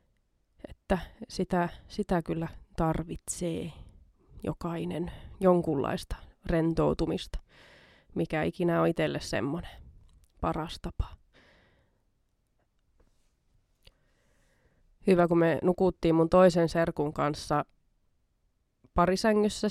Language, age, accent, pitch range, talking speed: Finnish, 20-39, native, 160-195 Hz, 70 wpm